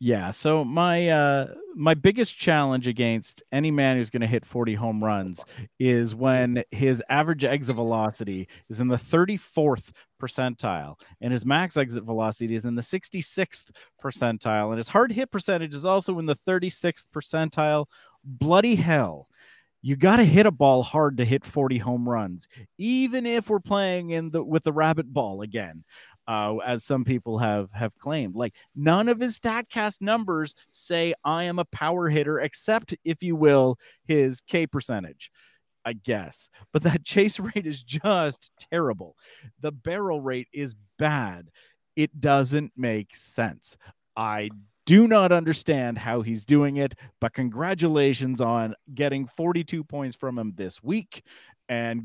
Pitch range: 115-165 Hz